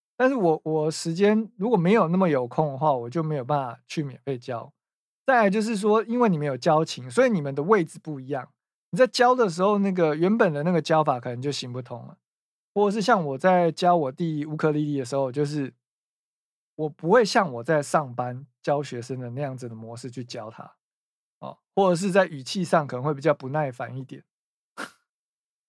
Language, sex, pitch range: Chinese, male, 130-170 Hz